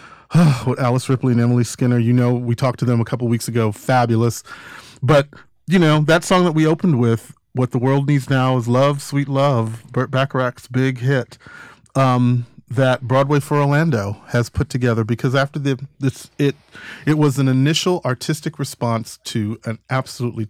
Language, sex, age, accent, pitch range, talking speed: English, male, 40-59, American, 120-145 Hz, 185 wpm